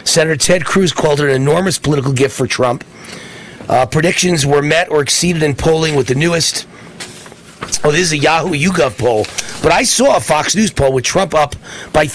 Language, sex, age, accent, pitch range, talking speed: English, male, 40-59, American, 140-200 Hz, 200 wpm